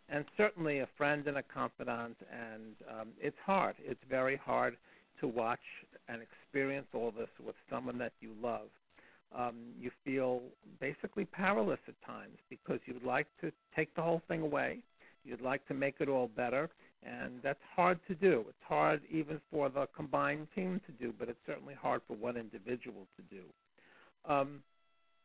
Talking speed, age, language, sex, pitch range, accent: 170 wpm, 60-79, English, male, 125-155 Hz, American